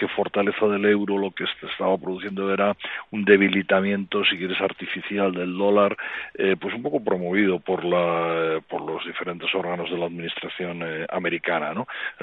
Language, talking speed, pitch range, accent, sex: Spanish, 175 wpm, 85-100 Hz, Spanish, male